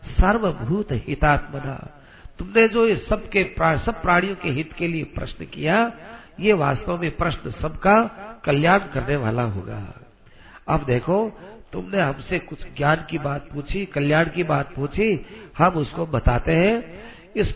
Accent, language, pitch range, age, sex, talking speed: native, Hindi, 145-200 Hz, 50-69, male, 140 wpm